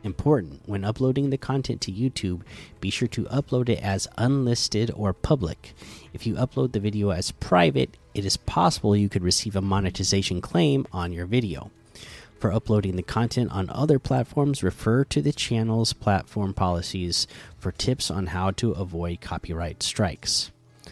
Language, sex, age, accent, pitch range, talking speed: English, male, 30-49, American, 95-125 Hz, 160 wpm